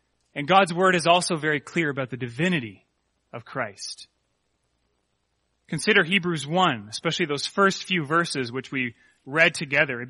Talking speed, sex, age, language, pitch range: 150 wpm, male, 30-49, English, 170-235 Hz